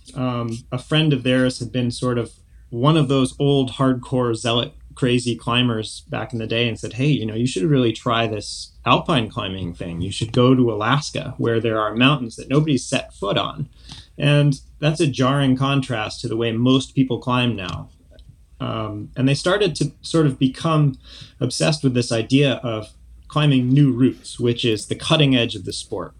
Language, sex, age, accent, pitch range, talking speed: English, male, 30-49, American, 110-135 Hz, 190 wpm